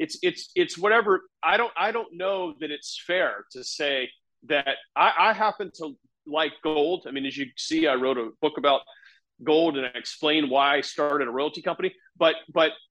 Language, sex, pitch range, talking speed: English, male, 150-230 Hz, 200 wpm